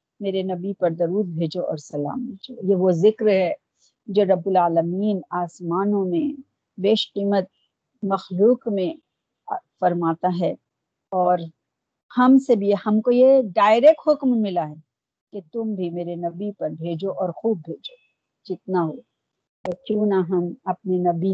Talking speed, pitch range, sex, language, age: 145 wpm, 175-215 Hz, female, Urdu, 50-69